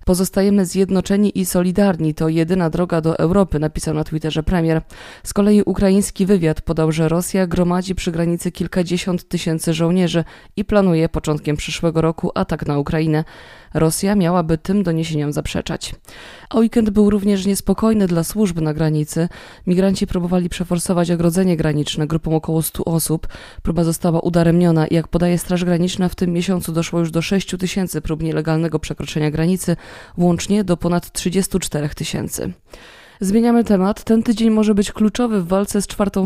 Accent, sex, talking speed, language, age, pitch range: native, female, 155 wpm, Polish, 20-39, 165-195 Hz